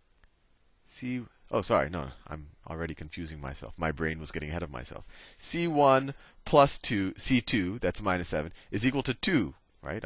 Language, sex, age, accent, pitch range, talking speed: English, male, 30-49, American, 85-125 Hz, 160 wpm